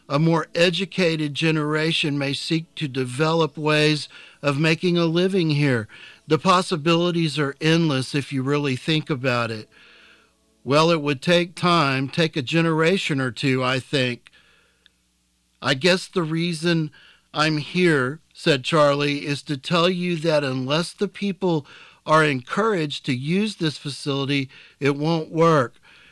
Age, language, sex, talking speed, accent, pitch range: 50-69, English, male, 140 wpm, American, 130-160 Hz